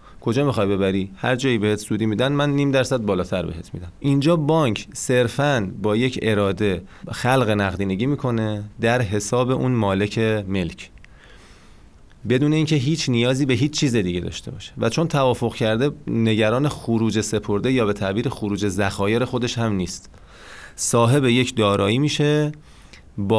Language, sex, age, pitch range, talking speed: Persian, male, 30-49, 100-135 Hz, 150 wpm